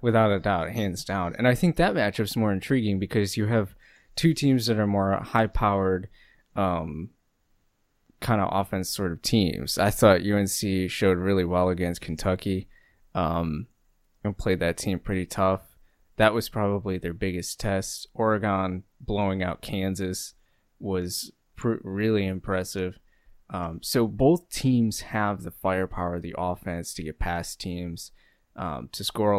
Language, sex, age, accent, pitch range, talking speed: English, male, 20-39, American, 90-105 Hz, 155 wpm